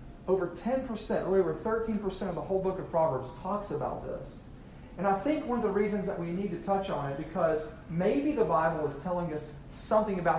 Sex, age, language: male, 40-59, English